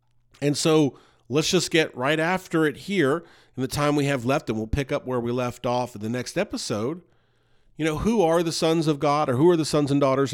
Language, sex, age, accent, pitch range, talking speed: English, male, 40-59, American, 120-155 Hz, 245 wpm